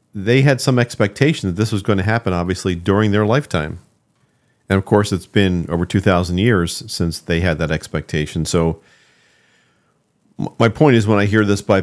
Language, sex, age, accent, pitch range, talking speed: English, male, 50-69, American, 85-105 Hz, 185 wpm